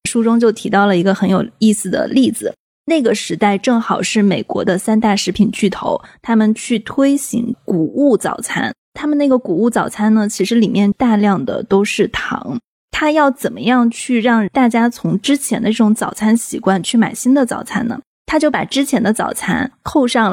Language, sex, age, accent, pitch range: Chinese, female, 20-39, native, 205-250 Hz